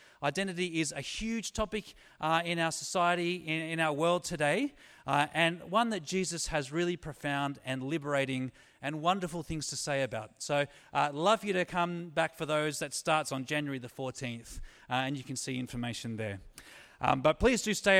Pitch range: 130-170 Hz